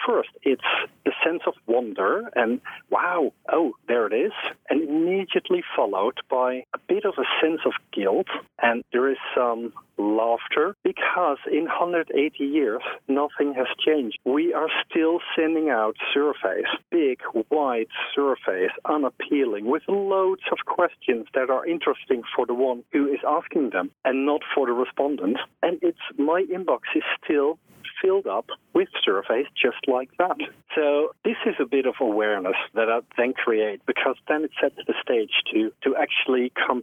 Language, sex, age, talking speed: English, male, 50-69, 160 wpm